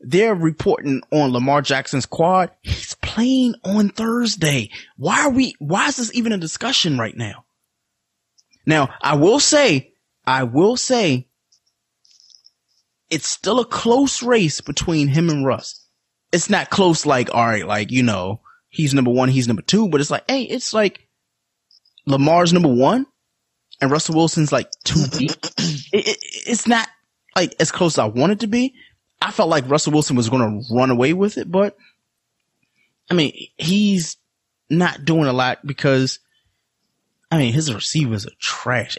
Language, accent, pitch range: English, American, 130-205 Hz